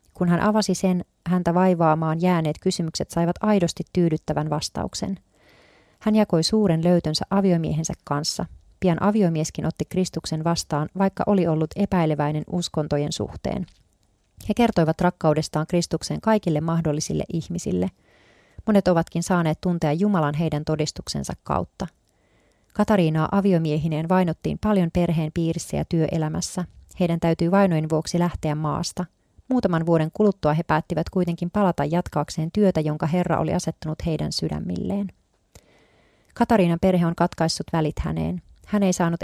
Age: 30-49